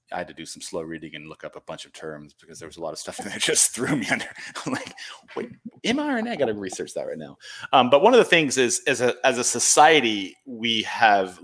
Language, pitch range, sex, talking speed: English, 95-125 Hz, male, 280 wpm